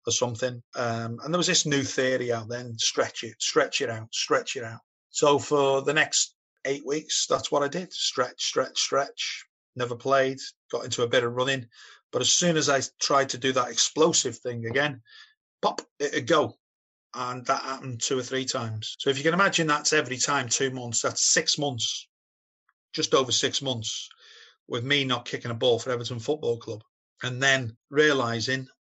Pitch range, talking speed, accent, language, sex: 115-135 Hz, 190 wpm, British, English, male